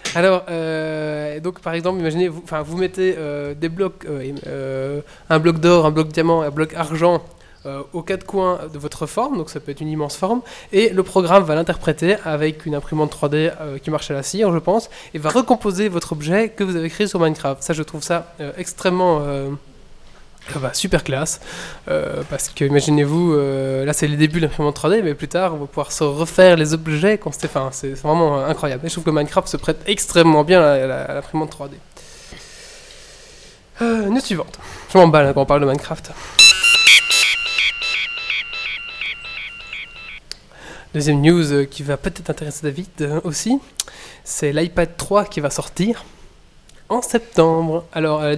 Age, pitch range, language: 20-39, 150-180 Hz, French